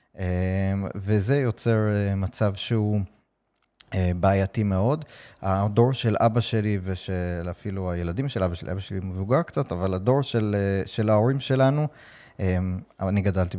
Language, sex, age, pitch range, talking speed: Hebrew, male, 30-49, 95-115 Hz, 125 wpm